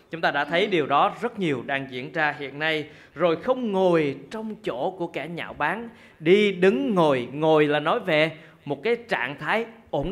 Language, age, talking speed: Vietnamese, 20-39, 200 wpm